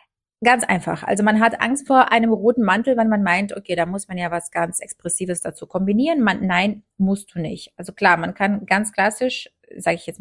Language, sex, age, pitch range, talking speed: German, female, 30-49, 175-215 Hz, 215 wpm